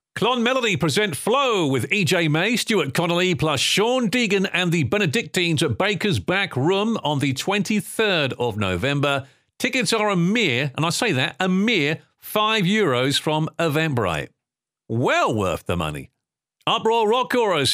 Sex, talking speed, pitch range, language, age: male, 150 wpm, 140-205 Hz, English, 50-69